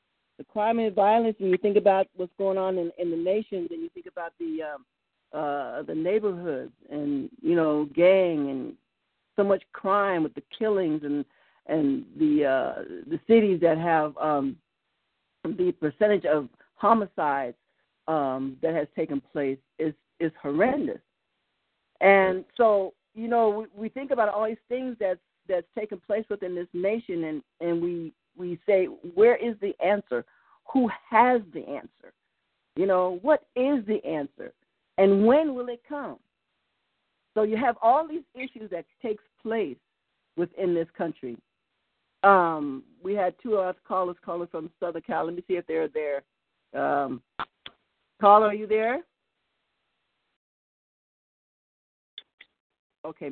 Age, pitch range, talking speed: 50-69, 165-225 Hz, 150 wpm